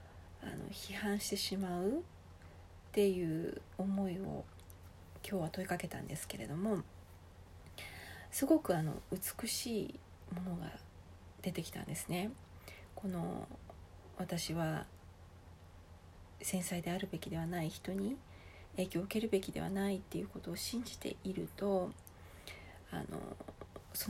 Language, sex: Japanese, female